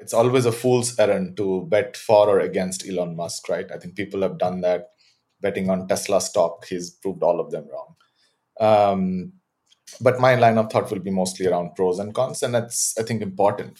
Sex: male